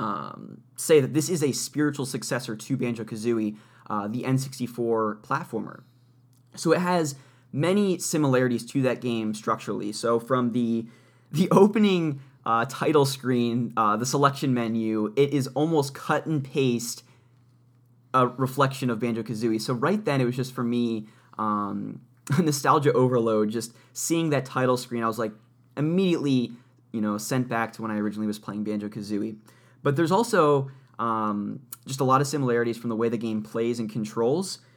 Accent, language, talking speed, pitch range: American, English, 165 wpm, 115-135 Hz